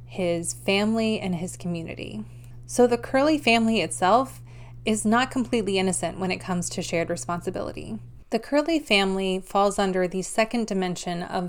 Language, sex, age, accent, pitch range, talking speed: English, female, 20-39, American, 175-215 Hz, 150 wpm